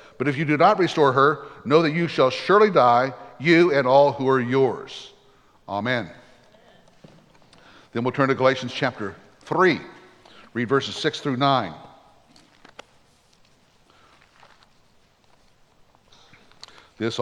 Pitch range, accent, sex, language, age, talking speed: 130-160 Hz, American, male, English, 60-79, 115 wpm